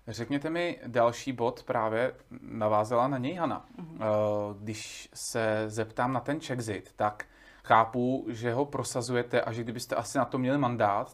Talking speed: 150 wpm